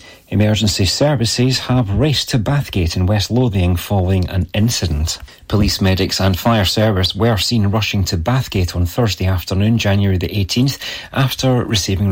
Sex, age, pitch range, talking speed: male, 30-49, 95-120 Hz, 150 wpm